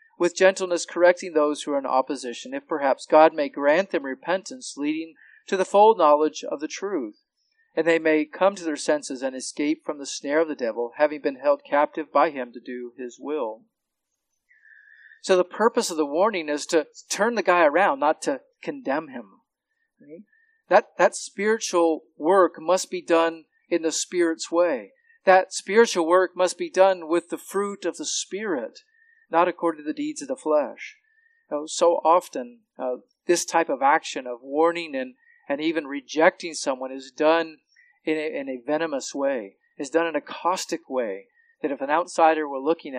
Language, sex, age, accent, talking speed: English, male, 40-59, American, 185 wpm